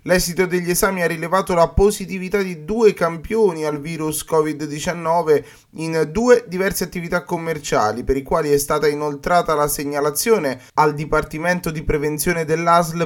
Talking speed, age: 140 wpm, 20-39